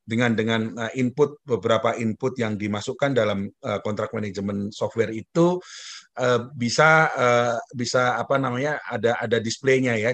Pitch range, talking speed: 110-130 Hz, 135 wpm